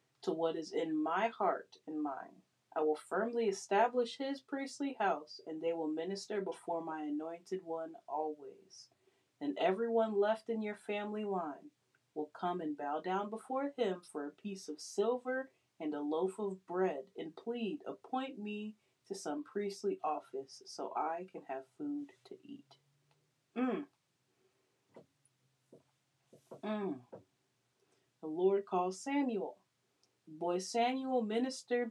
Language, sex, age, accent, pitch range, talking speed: English, female, 30-49, American, 155-225 Hz, 135 wpm